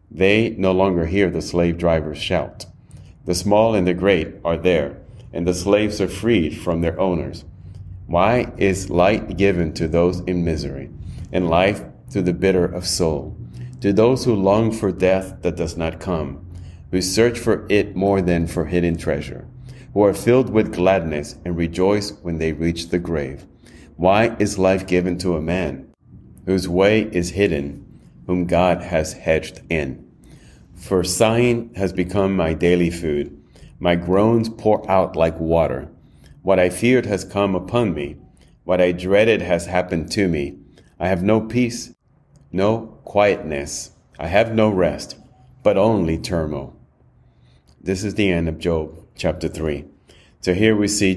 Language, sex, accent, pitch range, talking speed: English, male, American, 85-100 Hz, 160 wpm